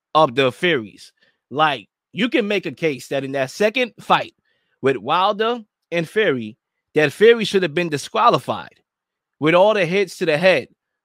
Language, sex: English, male